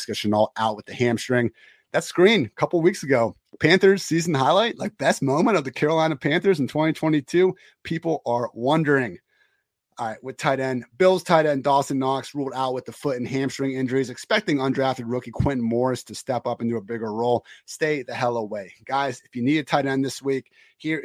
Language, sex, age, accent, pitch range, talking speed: English, male, 30-49, American, 110-135 Hz, 200 wpm